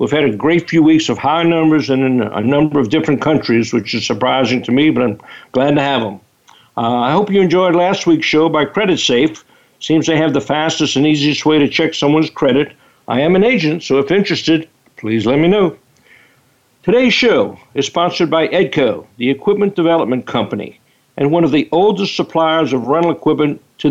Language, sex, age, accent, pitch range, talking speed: English, male, 60-79, American, 135-170 Hz, 200 wpm